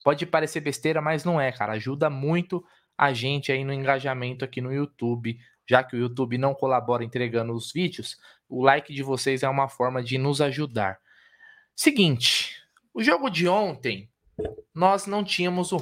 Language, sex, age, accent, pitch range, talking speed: Portuguese, male, 20-39, Brazilian, 135-205 Hz, 170 wpm